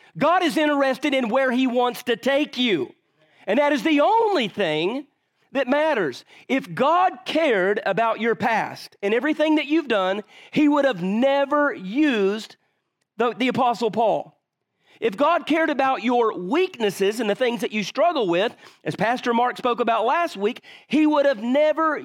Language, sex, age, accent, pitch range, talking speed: English, male, 40-59, American, 225-300 Hz, 170 wpm